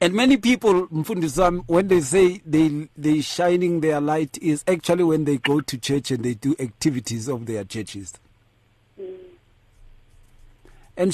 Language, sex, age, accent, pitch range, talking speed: English, male, 50-69, South African, 115-180 Hz, 140 wpm